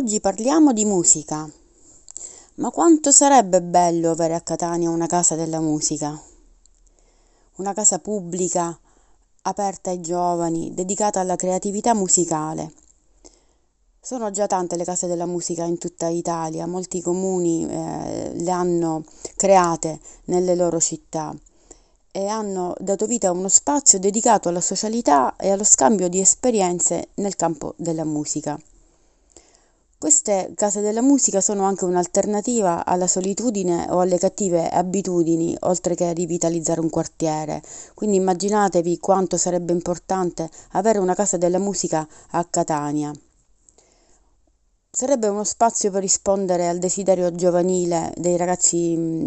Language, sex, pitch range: Italian, female, 170-200 Hz